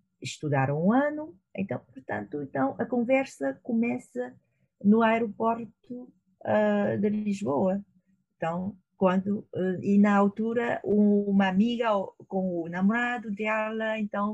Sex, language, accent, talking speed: female, Portuguese, Brazilian, 115 wpm